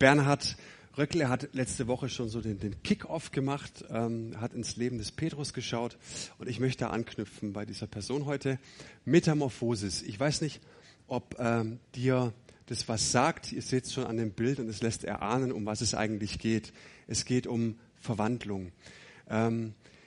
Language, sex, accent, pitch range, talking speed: German, male, German, 115-140 Hz, 170 wpm